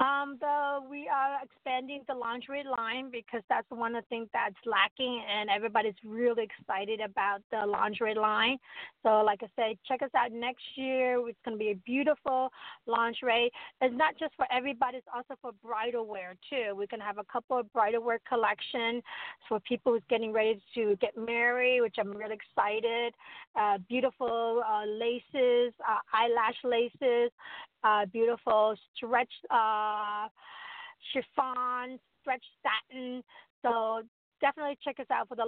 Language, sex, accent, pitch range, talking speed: English, female, American, 215-255 Hz, 160 wpm